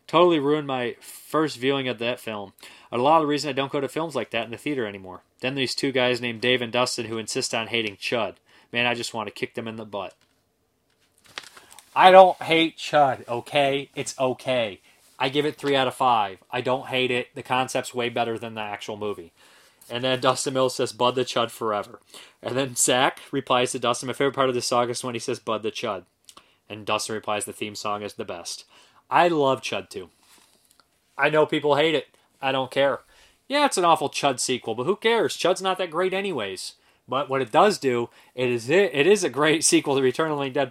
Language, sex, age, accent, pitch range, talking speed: English, male, 30-49, American, 120-145 Hz, 225 wpm